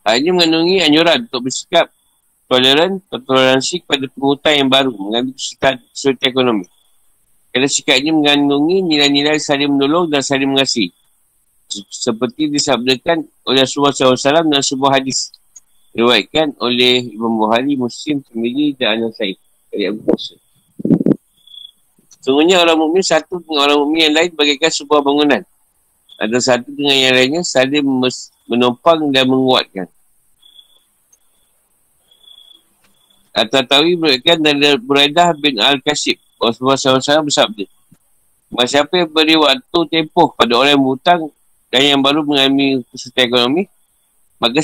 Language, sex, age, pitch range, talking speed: Malay, male, 50-69, 130-155 Hz, 115 wpm